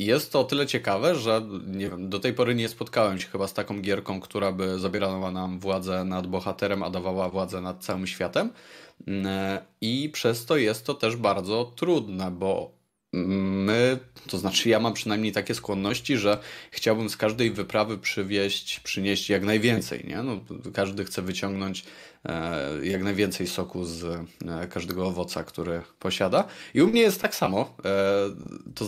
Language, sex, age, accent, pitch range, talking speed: Polish, male, 20-39, native, 95-110 Hz, 160 wpm